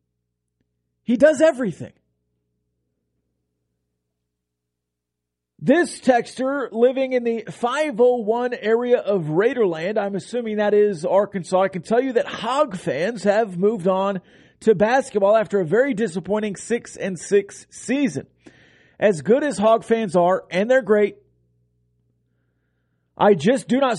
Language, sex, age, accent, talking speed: English, male, 40-59, American, 120 wpm